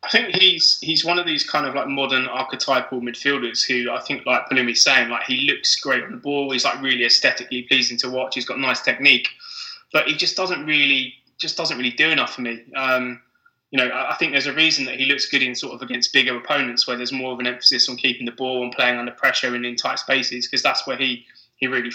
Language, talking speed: English, 250 wpm